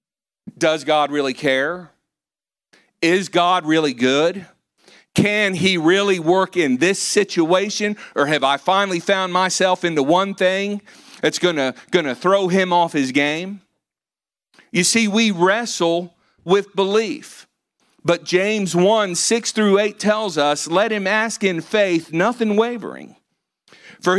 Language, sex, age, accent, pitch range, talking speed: English, male, 50-69, American, 165-215 Hz, 130 wpm